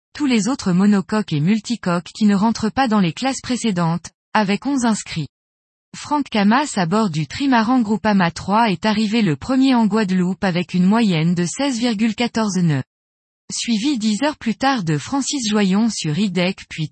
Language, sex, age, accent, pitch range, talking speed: French, female, 20-39, French, 175-240 Hz, 170 wpm